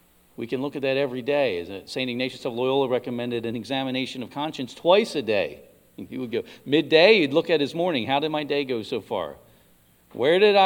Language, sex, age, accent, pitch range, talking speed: English, male, 50-69, American, 105-145 Hz, 215 wpm